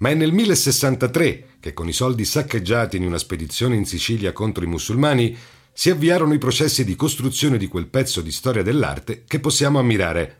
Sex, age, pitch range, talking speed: male, 50-69, 95-140 Hz, 185 wpm